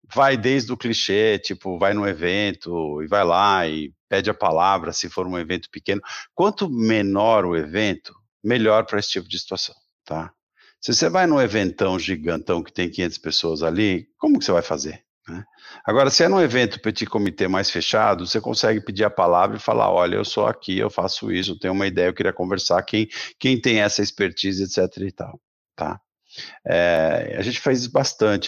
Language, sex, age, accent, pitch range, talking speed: Portuguese, male, 50-69, Brazilian, 95-125 Hz, 195 wpm